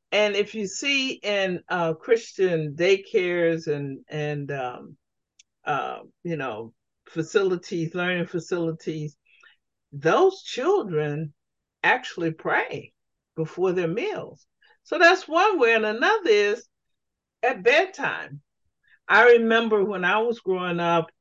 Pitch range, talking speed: 155-215 Hz, 115 wpm